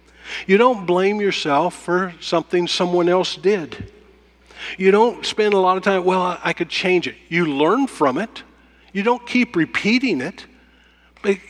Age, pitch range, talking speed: 50-69, 125-185 Hz, 160 wpm